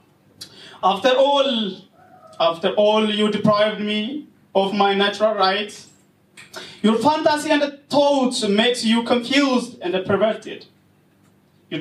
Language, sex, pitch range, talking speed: Swedish, male, 190-270 Hz, 105 wpm